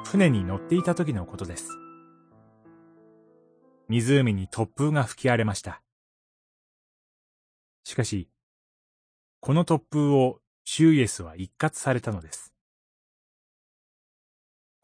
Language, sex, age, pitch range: Japanese, male, 30-49, 95-150 Hz